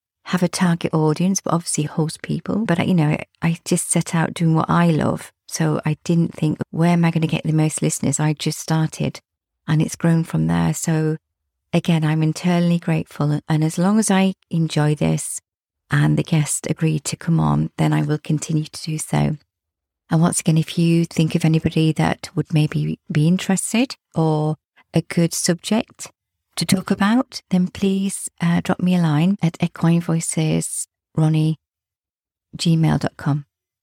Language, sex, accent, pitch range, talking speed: English, female, British, 150-175 Hz, 170 wpm